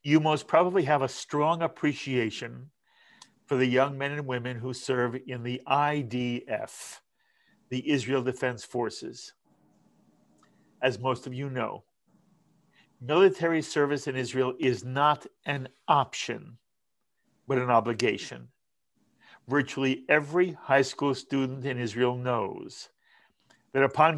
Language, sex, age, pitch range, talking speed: English, male, 50-69, 125-150 Hz, 120 wpm